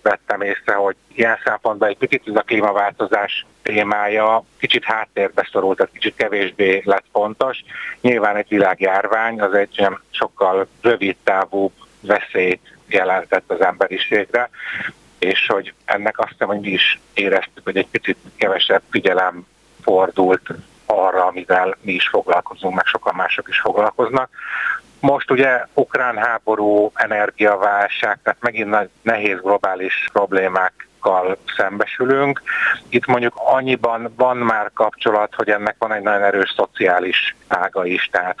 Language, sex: Hungarian, male